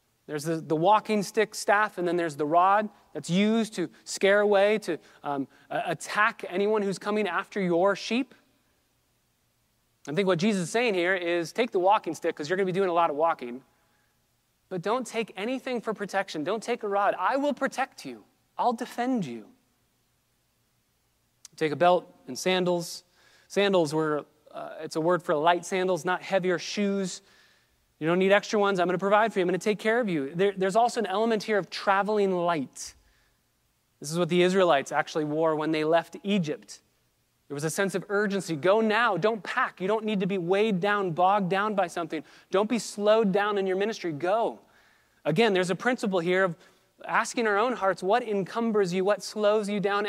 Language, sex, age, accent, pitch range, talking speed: English, male, 30-49, American, 170-210 Hz, 195 wpm